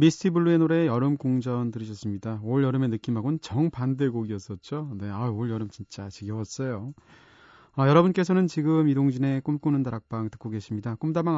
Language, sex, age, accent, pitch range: Korean, male, 30-49, native, 115-155 Hz